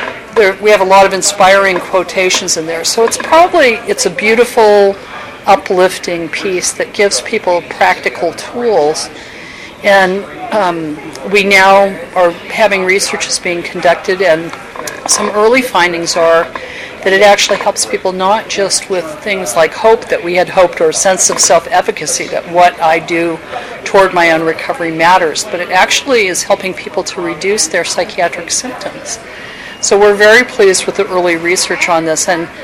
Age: 50-69